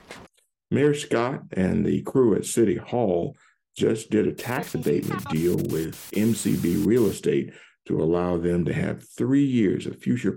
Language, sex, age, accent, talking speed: English, male, 50-69, American, 155 wpm